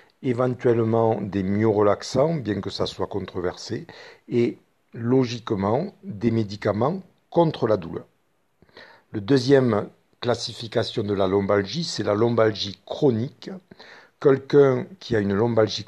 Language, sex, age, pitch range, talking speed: French, male, 60-79, 105-130 Hz, 115 wpm